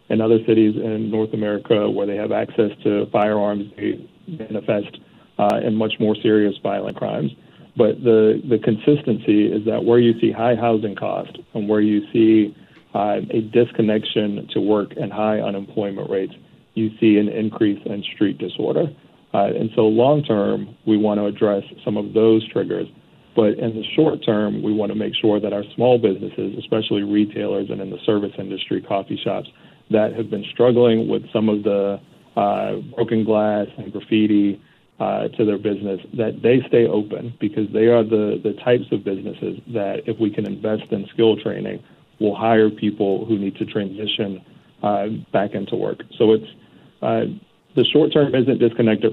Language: English